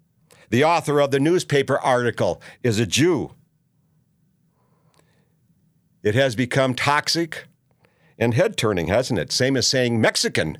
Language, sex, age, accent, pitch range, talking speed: English, male, 60-79, American, 130-170 Hz, 120 wpm